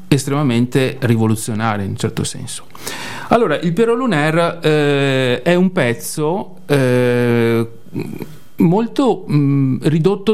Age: 40-59